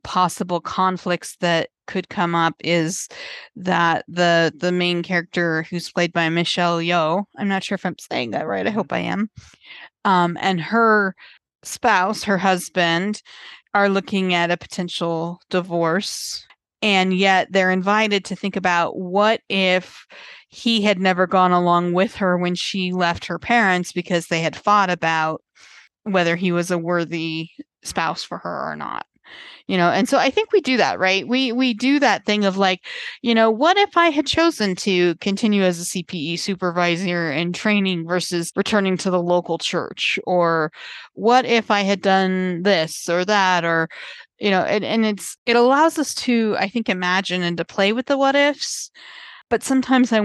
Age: 30-49